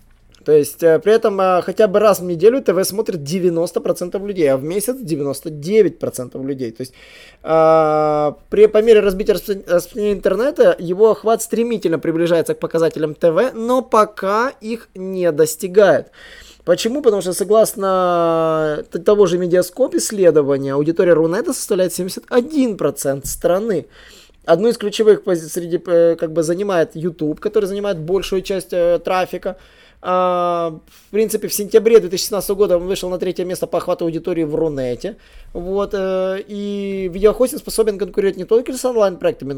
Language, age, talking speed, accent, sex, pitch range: Russian, 20-39, 135 wpm, native, male, 160-215 Hz